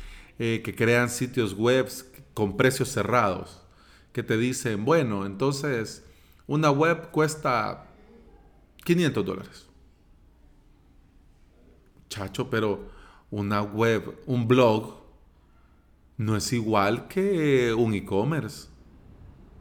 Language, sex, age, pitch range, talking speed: Spanish, male, 40-59, 95-140 Hz, 90 wpm